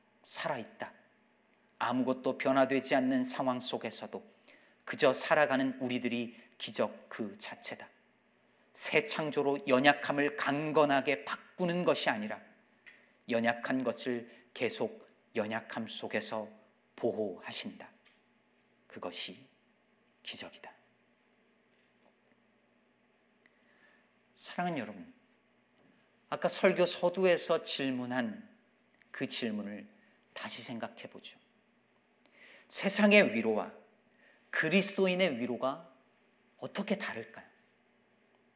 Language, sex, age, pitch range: Korean, male, 40-59, 140-230 Hz